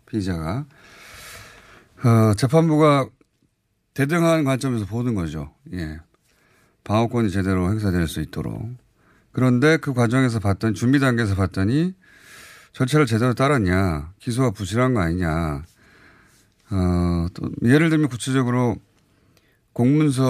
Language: Korean